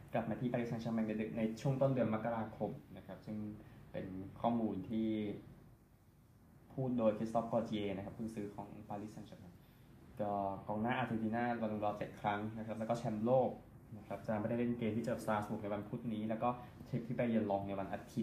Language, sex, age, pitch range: Thai, male, 20-39, 100-120 Hz